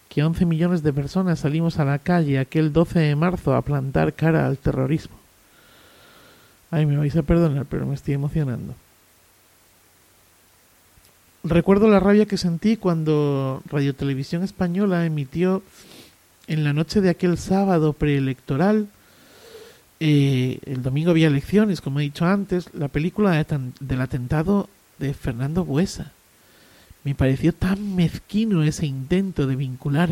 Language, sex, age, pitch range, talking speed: Spanish, male, 50-69, 135-175 Hz, 135 wpm